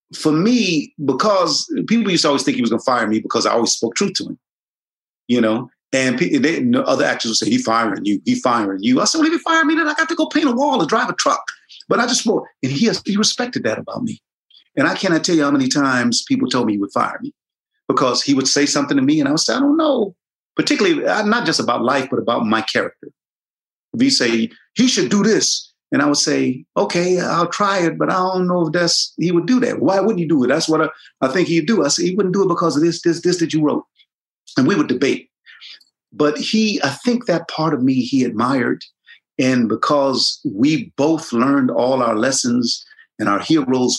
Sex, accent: male, American